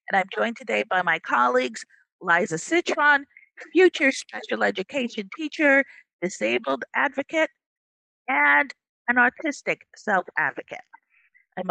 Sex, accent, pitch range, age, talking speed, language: female, American, 185-285 Hz, 50-69, 100 wpm, English